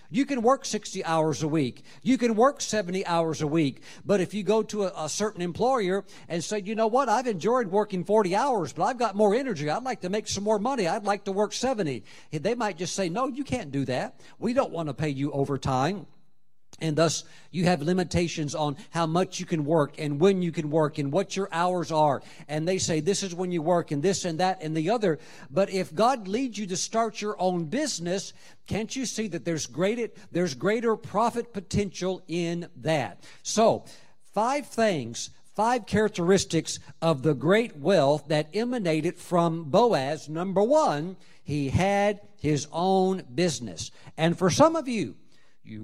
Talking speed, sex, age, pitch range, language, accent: 195 wpm, male, 50-69, 160-215 Hz, English, American